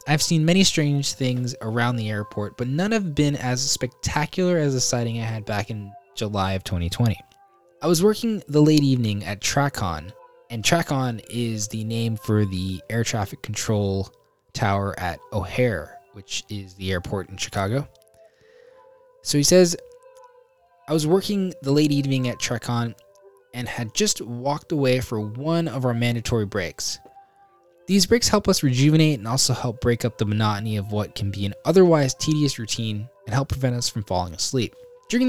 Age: 10-29